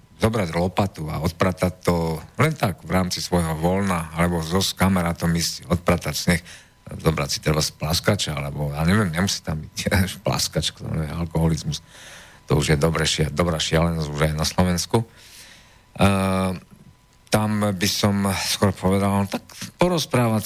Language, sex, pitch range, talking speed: Slovak, male, 80-105 Hz, 140 wpm